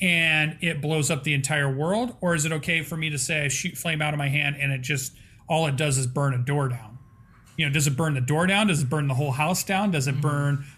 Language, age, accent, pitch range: English, 40-59, American, 135-165 Hz